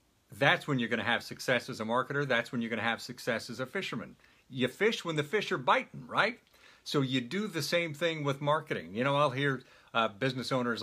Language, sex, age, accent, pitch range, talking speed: English, male, 50-69, American, 130-170 Hz, 225 wpm